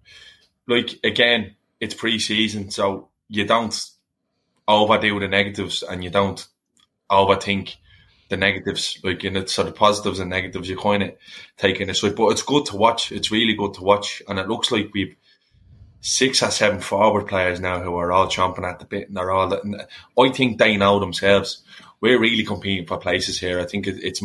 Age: 20-39